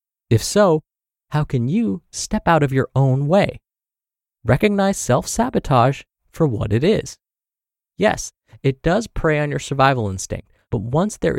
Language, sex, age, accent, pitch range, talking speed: English, male, 20-39, American, 115-165 Hz, 150 wpm